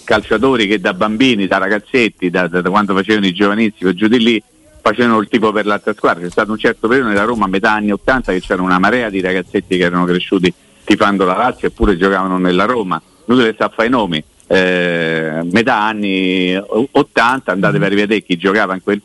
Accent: native